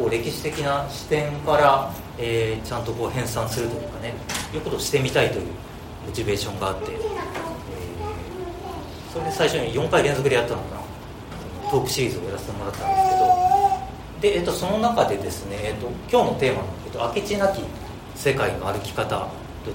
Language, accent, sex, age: Japanese, native, male, 40-59